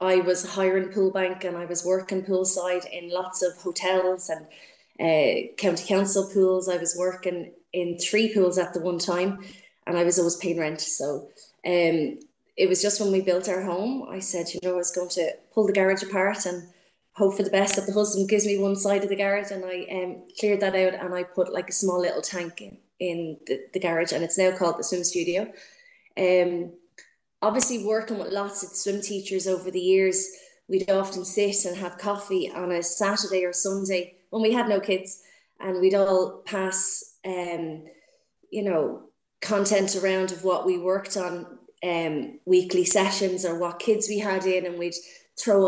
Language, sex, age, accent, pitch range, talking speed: English, female, 20-39, Irish, 180-195 Hz, 195 wpm